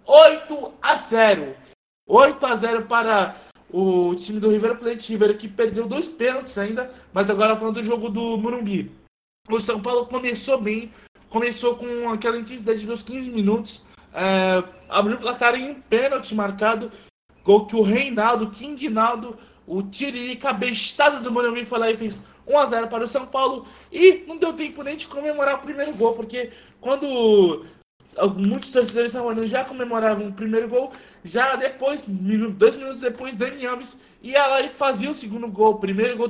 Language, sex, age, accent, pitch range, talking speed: Portuguese, male, 20-39, Brazilian, 205-250 Hz, 175 wpm